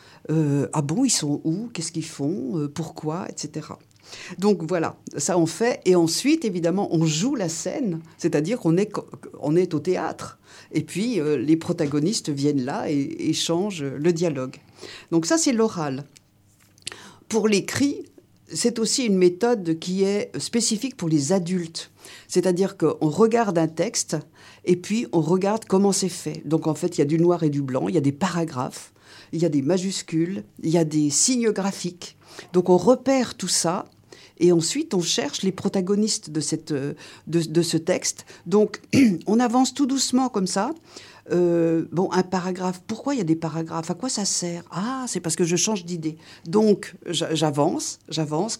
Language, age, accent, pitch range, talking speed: French, 50-69, French, 160-205 Hz, 180 wpm